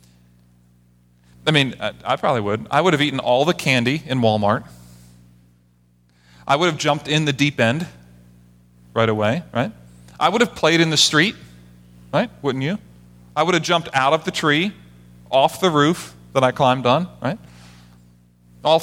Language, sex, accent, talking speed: English, male, American, 165 wpm